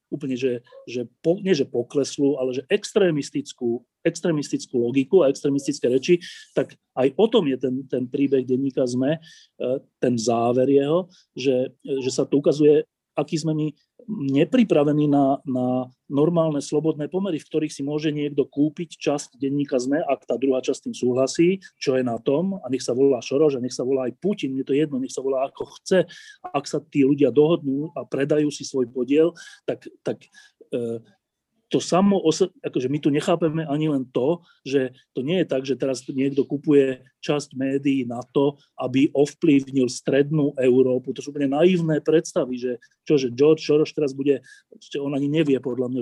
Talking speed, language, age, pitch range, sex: 180 wpm, Slovak, 30-49, 130-160 Hz, male